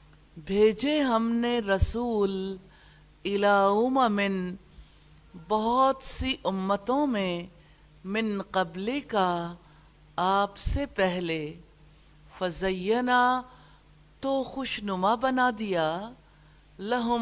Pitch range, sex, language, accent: 180-230 Hz, female, English, Indian